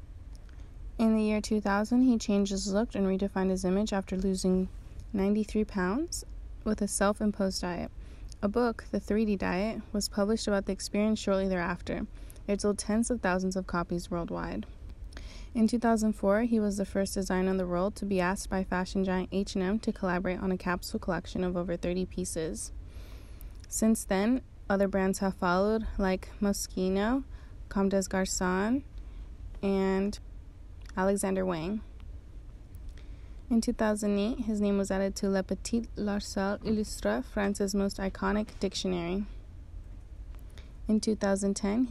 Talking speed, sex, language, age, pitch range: 140 wpm, female, English, 20-39, 180-210 Hz